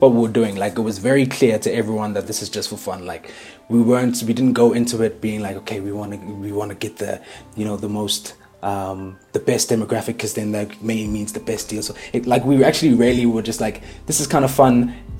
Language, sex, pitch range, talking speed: English, male, 105-120 Hz, 255 wpm